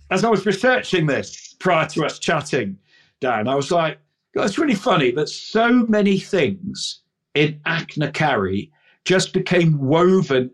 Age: 50-69